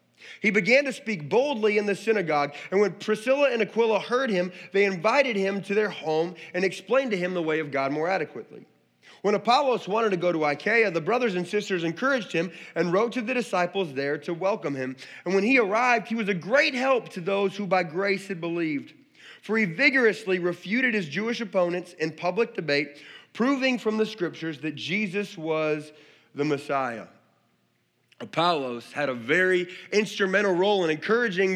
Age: 30-49